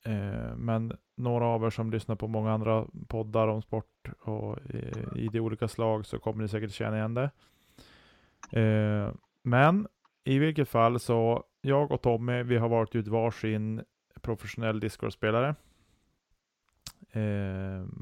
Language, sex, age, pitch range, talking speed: Swedish, male, 20-39, 105-120 Hz, 145 wpm